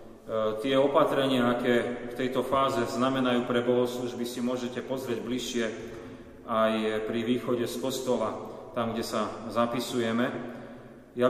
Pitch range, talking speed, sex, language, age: 115-130 Hz, 125 wpm, male, Slovak, 40-59